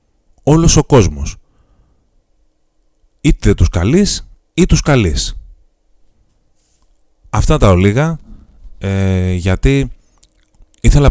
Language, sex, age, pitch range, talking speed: Greek, male, 30-49, 75-120 Hz, 80 wpm